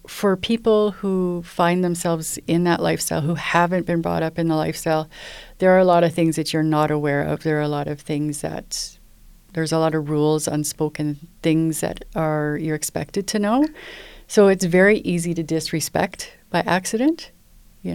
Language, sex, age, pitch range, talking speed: English, female, 40-59, 160-190 Hz, 185 wpm